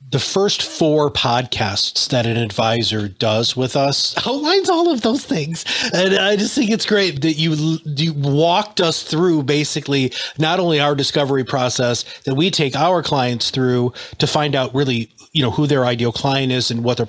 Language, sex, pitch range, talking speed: English, male, 130-170 Hz, 185 wpm